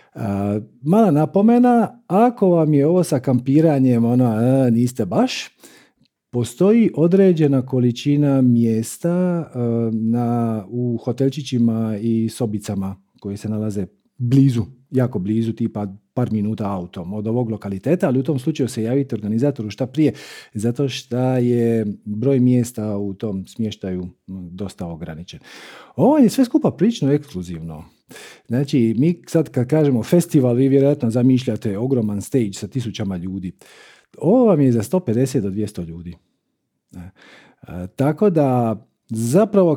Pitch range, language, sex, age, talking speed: 105-145 Hz, Croatian, male, 40-59, 125 wpm